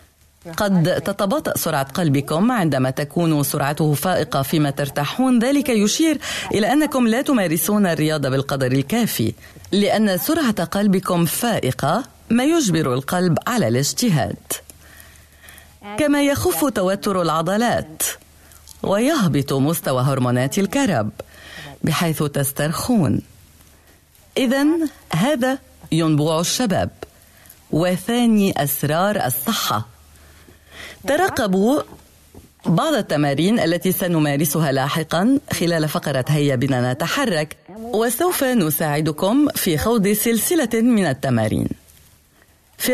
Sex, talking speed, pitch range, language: female, 90 wpm, 140-215 Hz, Arabic